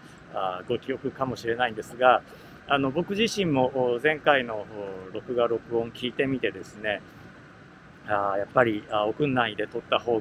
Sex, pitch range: male, 115-150 Hz